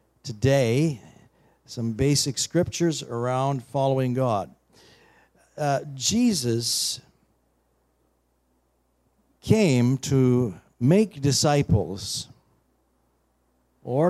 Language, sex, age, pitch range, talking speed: English, male, 60-79, 120-165 Hz, 60 wpm